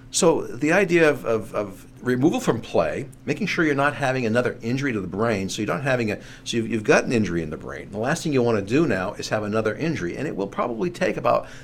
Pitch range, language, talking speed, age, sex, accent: 100-130 Hz, English, 235 wpm, 60-79, male, American